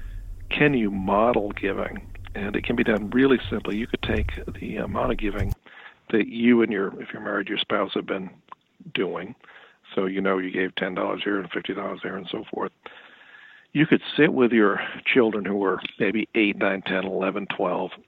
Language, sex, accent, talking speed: English, male, American, 190 wpm